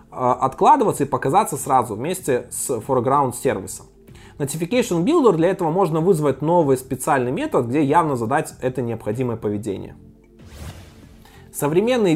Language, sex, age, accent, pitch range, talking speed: Russian, male, 20-39, native, 130-175 Hz, 120 wpm